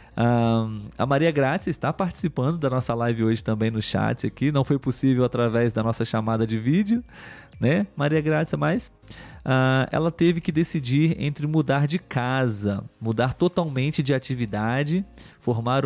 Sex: male